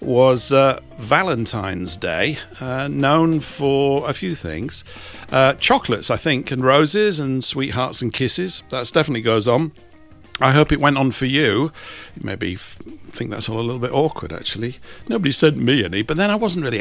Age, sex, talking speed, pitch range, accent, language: 50-69, male, 180 wpm, 110-145 Hz, British, English